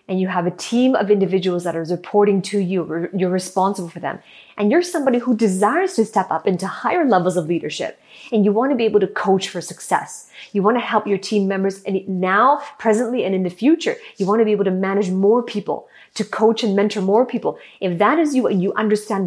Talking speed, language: 235 wpm, English